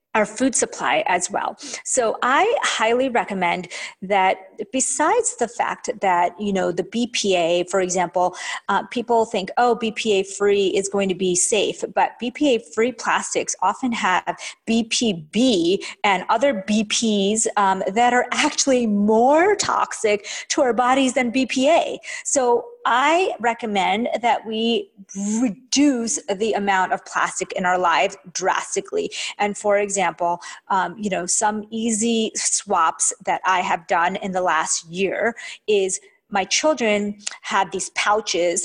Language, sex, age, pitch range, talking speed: English, female, 30-49, 185-235 Hz, 140 wpm